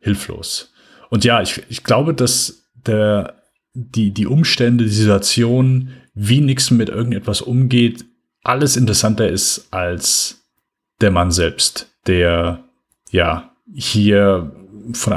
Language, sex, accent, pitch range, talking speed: German, male, German, 95-120 Hz, 115 wpm